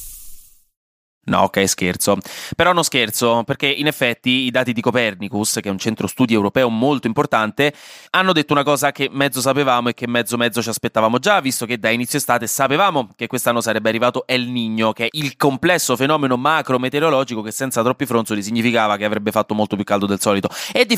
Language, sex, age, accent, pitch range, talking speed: Italian, male, 20-39, native, 115-145 Hz, 195 wpm